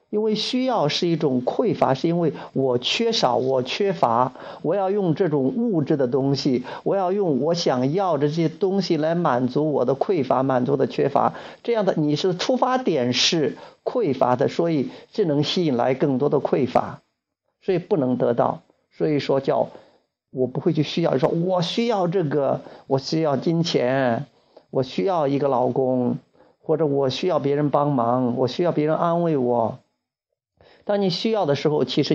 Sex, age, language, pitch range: male, 50-69, Chinese, 130-175 Hz